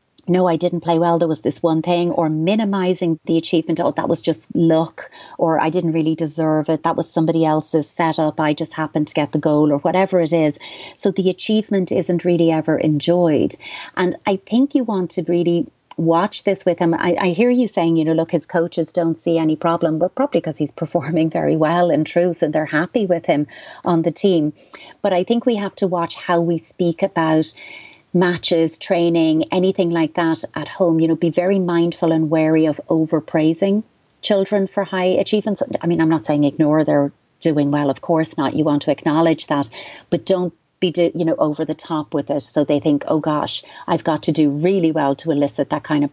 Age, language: 30-49, English